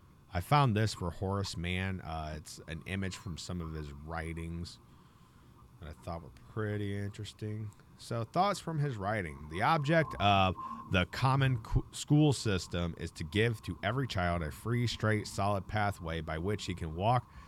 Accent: American